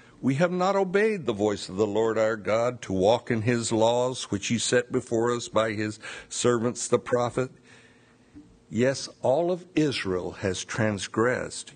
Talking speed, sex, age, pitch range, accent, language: 165 wpm, male, 60-79, 105-130 Hz, American, English